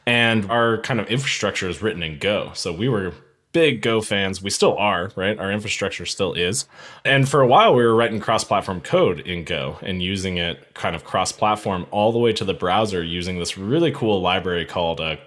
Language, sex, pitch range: English, male, 95-120 Hz